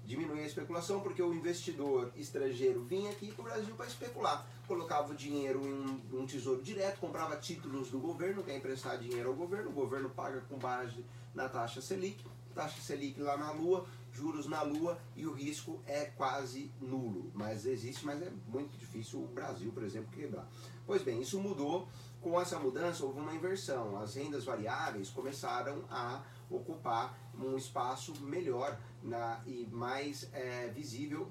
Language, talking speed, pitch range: Portuguese, 165 wpm, 120-155 Hz